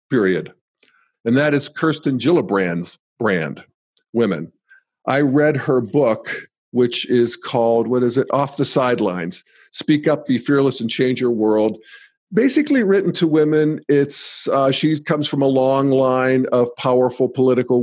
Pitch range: 135-170 Hz